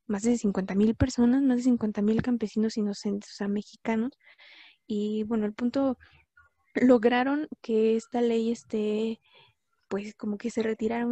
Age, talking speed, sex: 20-39, 150 wpm, female